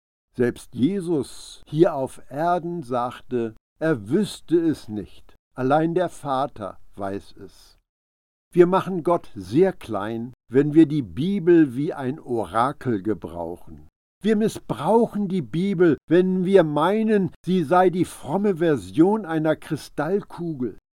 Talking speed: 120 wpm